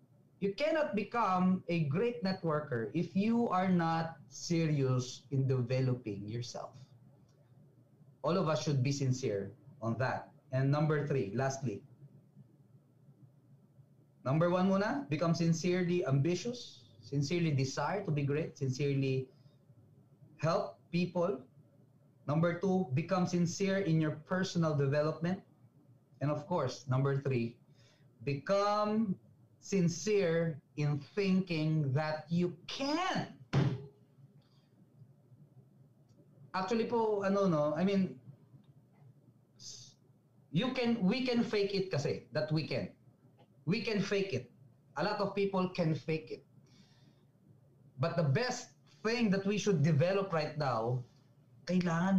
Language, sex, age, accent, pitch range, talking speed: Filipino, male, 20-39, native, 135-180 Hz, 115 wpm